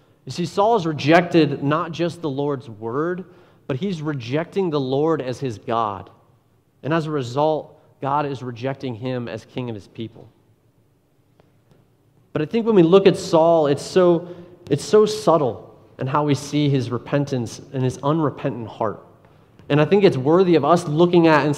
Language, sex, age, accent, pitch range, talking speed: English, male, 30-49, American, 130-165 Hz, 175 wpm